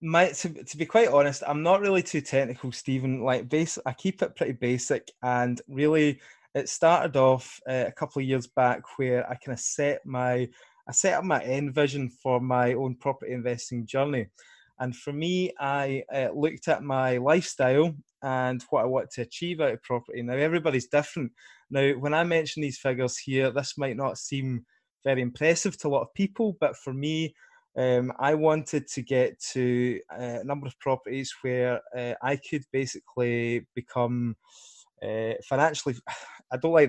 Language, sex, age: English, male, 20-39